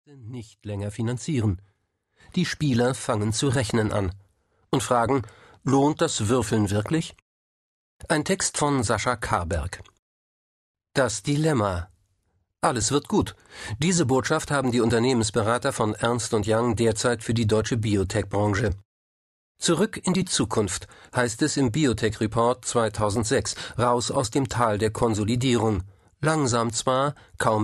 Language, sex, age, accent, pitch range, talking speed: German, male, 50-69, German, 105-130 Hz, 125 wpm